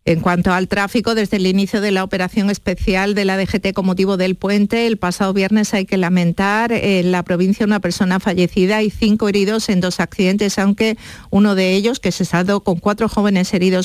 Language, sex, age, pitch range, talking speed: Spanish, female, 50-69, 185-220 Hz, 205 wpm